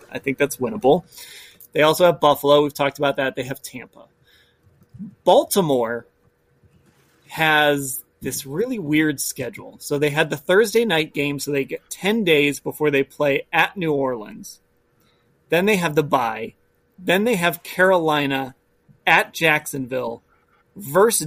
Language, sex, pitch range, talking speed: English, male, 140-190 Hz, 145 wpm